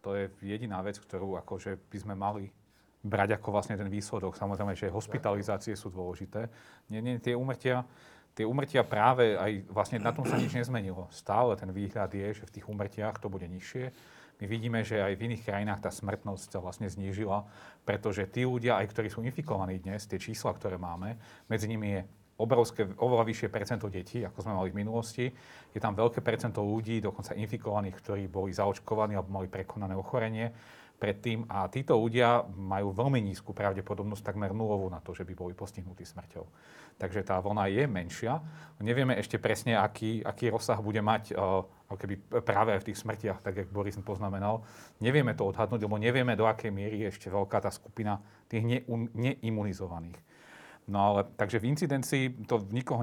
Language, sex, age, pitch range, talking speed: Slovak, male, 40-59, 100-115 Hz, 180 wpm